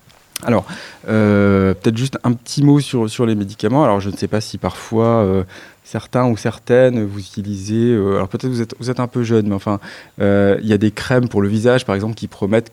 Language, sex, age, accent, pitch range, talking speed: French, male, 20-39, French, 95-120 Hz, 230 wpm